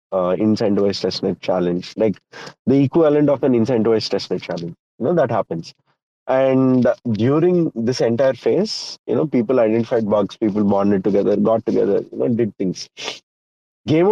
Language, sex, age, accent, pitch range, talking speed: English, male, 30-49, Indian, 100-125 Hz, 155 wpm